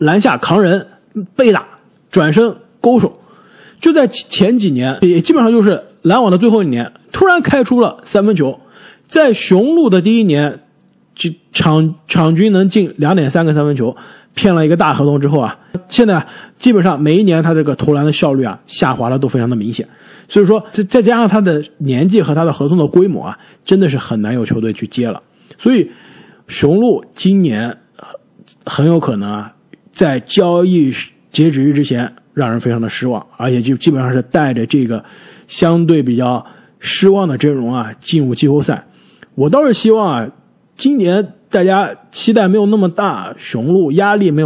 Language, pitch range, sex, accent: Chinese, 140-205 Hz, male, native